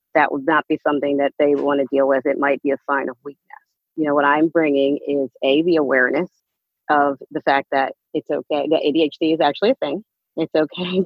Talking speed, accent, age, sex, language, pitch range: 220 wpm, American, 40-59, female, English, 145-175 Hz